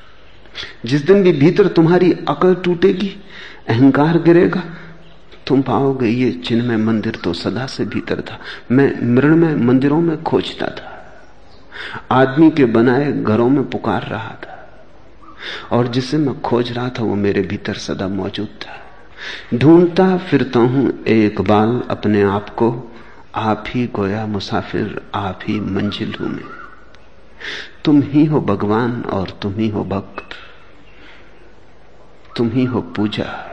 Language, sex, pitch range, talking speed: Hindi, male, 105-150 Hz, 135 wpm